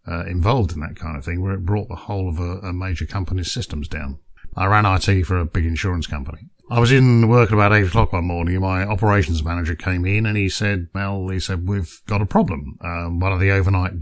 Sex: male